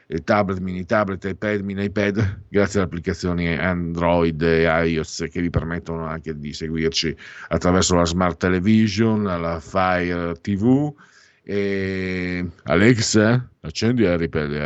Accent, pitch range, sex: native, 85-115 Hz, male